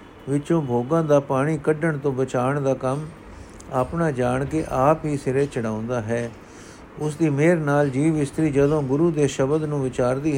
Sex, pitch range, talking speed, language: male, 125-160 Hz, 170 wpm, Punjabi